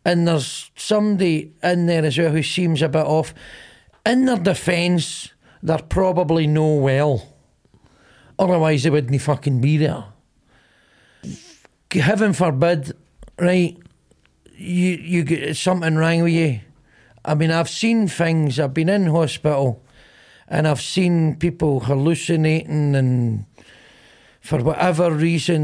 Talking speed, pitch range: 125 wpm, 150-180 Hz